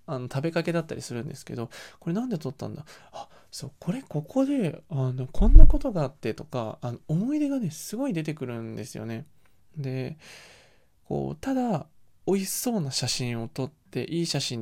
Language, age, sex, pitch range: Japanese, 20-39, male, 125-180 Hz